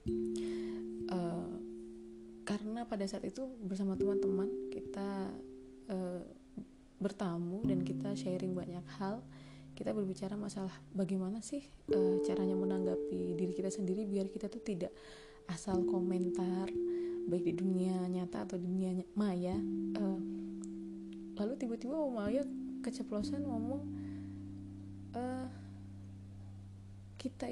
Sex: female